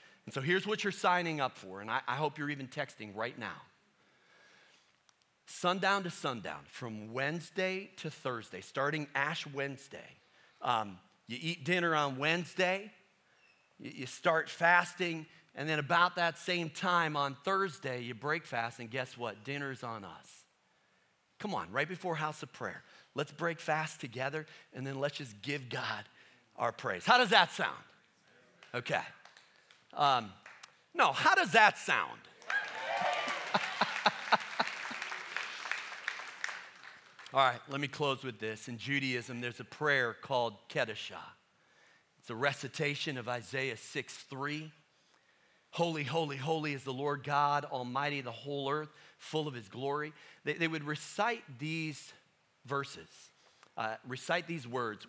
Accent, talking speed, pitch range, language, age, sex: American, 140 wpm, 130-160 Hz, English, 40-59, male